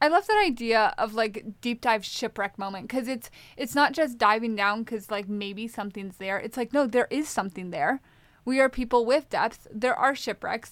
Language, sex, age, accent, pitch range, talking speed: English, female, 10-29, American, 205-250 Hz, 205 wpm